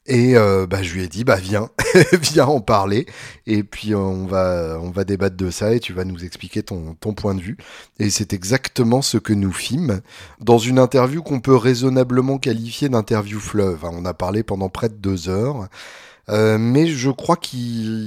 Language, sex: French, male